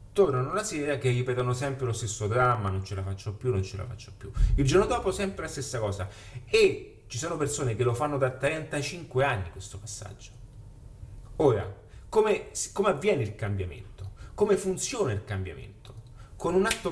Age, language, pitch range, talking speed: 30-49, Italian, 105-135 Hz, 180 wpm